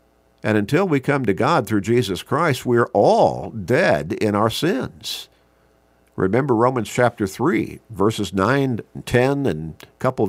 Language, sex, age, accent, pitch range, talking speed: English, male, 50-69, American, 80-115 Hz, 145 wpm